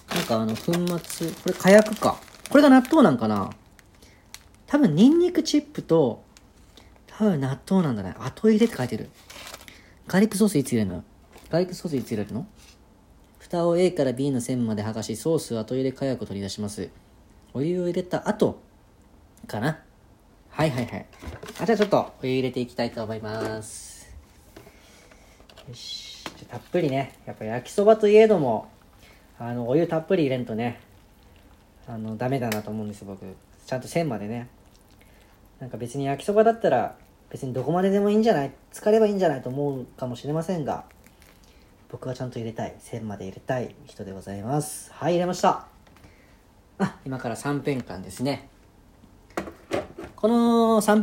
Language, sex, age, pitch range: Japanese, female, 40-59, 110-180 Hz